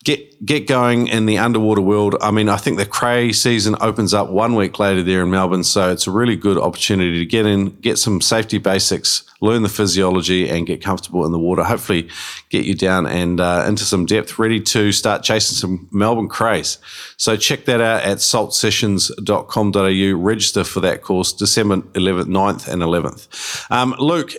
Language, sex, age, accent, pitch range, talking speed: English, male, 40-59, Australian, 95-115 Hz, 190 wpm